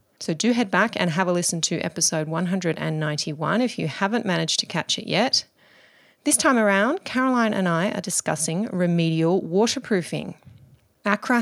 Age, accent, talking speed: 30-49, Australian, 160 wpm